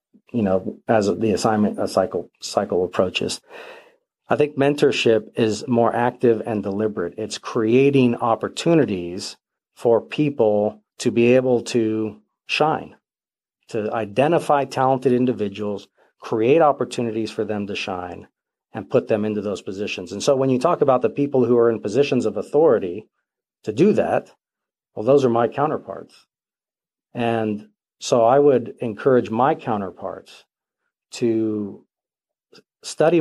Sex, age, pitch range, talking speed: male, 40-59, 105-130 Hz, 135 wpm